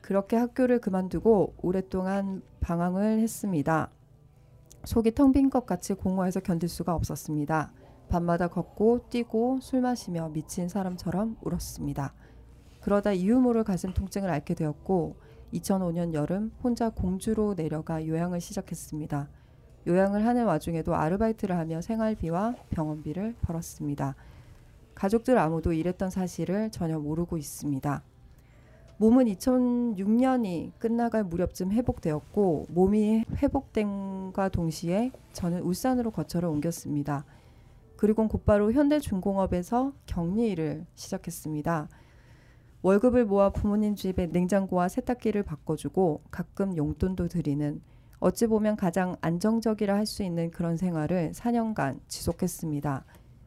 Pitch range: 160-215 Hz